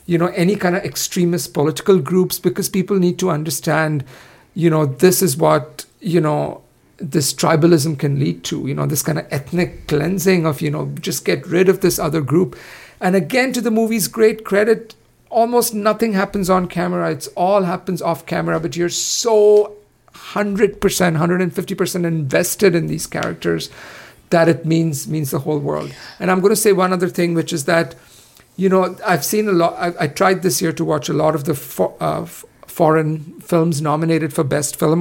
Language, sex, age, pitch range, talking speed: English, male, 50-69, 155-185 Hz, 190 wpm